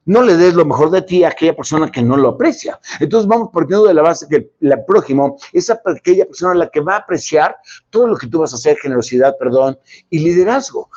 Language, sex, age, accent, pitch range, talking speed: Spanish, male, 50-69, Mexican, 145-225 Hz, 235 wpm